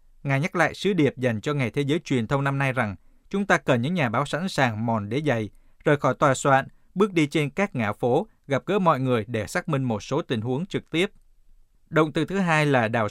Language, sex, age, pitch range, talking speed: Vietnamese, male, 20-39, 125-160 Hz, 250 wpm